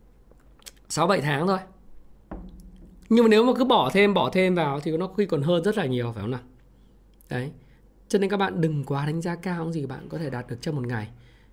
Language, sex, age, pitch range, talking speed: Vietnamese, male, 20-39, 155-235 Hz, 230 wpm